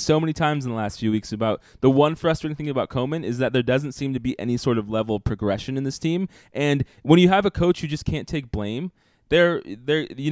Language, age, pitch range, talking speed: English, 20-39, 110-135 Hz, 255 wpm